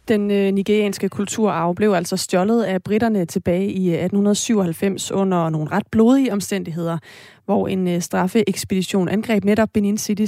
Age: 30-49